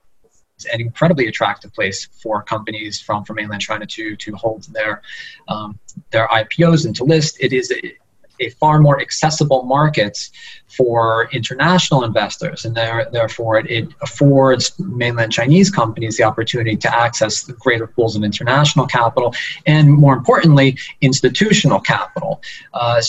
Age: 20-39